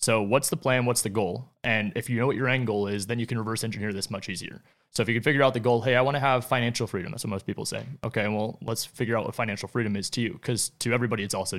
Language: English